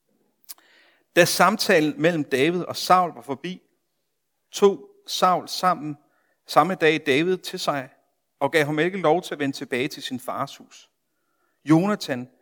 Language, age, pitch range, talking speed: Danish, 60-79, 145-180 Hz, 145 wpm